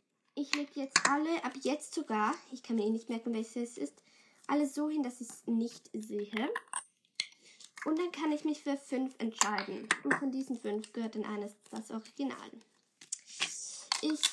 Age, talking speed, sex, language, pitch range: 10-29, 175 wpm, female, German, 220-290 Hz